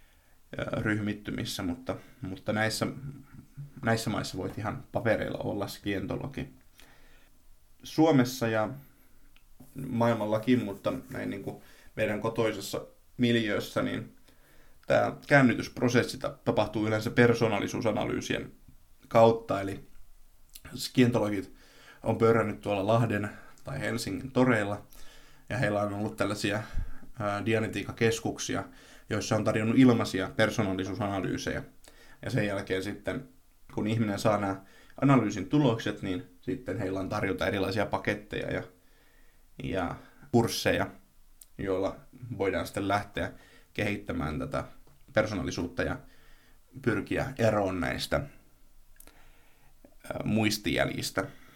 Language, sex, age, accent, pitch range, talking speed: Finnish, male, 20-39, native, 100-120 Hz, 90 wpm